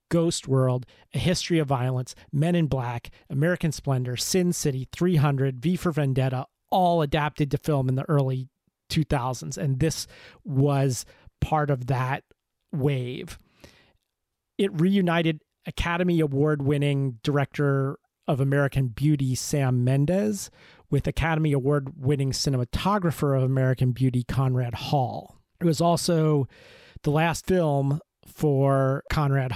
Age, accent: 30-49, American